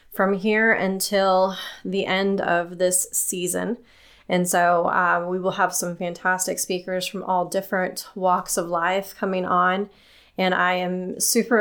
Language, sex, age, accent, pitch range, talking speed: English, female, 20-39, American, 180-215 Hz, 150 wpm